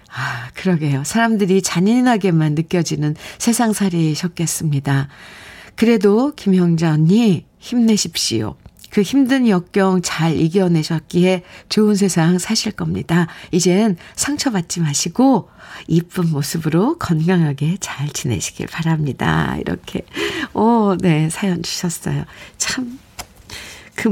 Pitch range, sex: 165-225 Hz, female